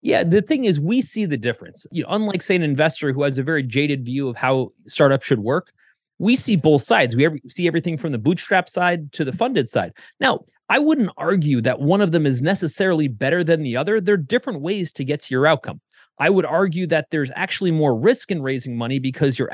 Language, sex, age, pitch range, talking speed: English, male, 30-49, 135-195 Hz, 235 wpm